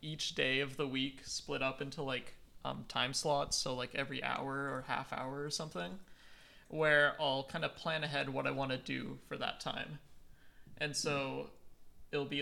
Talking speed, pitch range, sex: 190 wpm, 130-150 Hz, male